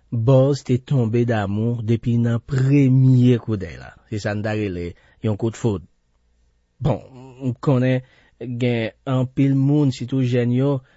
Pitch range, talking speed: 105-135 Hz, 155 wpm